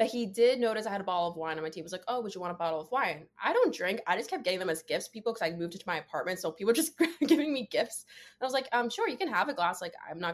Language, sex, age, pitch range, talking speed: English, female, 20-39, 165-220 Hz, 360 wpm